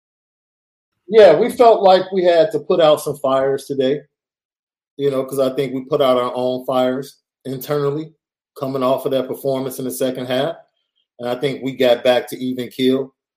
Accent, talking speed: American, 190 wpm